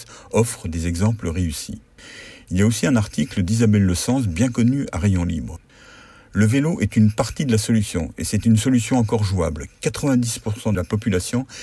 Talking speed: 185 wpm